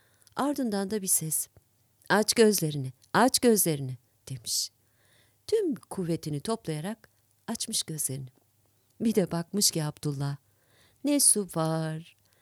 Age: 50-69